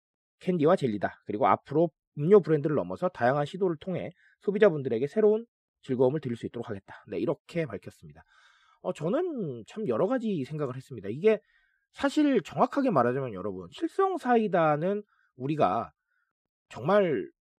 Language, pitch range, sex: Korean, 145-220 Hz, male